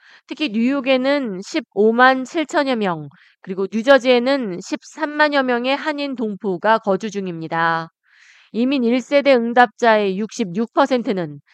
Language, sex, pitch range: Korean, female, 195-275 Hz